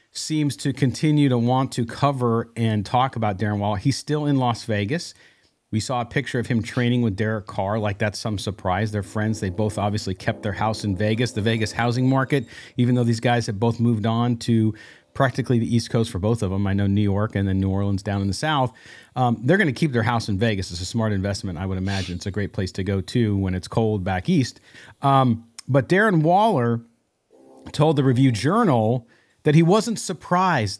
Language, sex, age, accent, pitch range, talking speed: English, male, 40-59, American, 105-145 Hz, 220 wpm